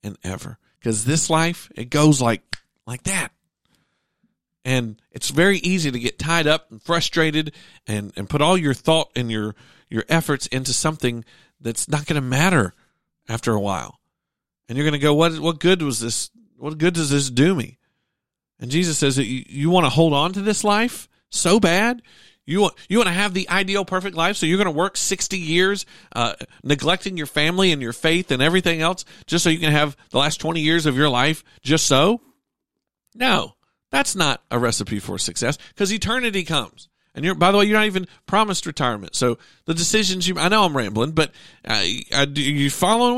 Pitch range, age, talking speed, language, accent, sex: 135-185 Hz, 40-59, 200 wpm, English, American, male